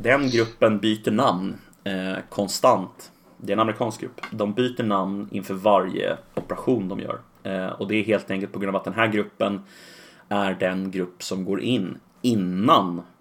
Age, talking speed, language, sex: 30-49, 175 wpm, Swedish, male